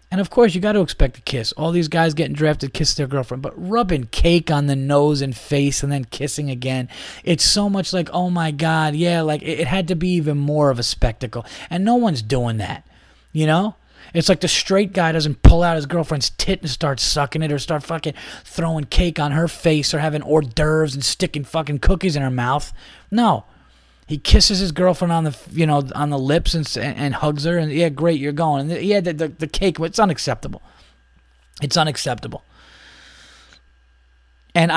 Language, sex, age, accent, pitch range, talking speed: English, male, 20-39, American, 125-165 Hz, 210 wpm